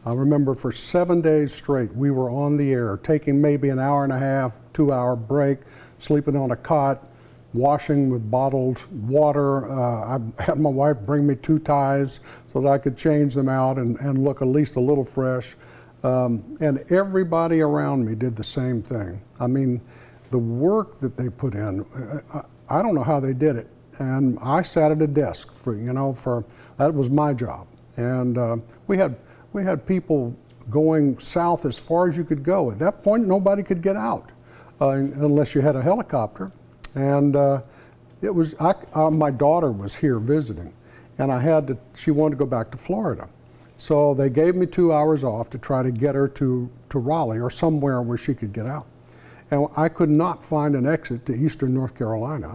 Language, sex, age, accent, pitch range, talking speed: English, male, 60-79, American, 125-150 Hz, 200 wpm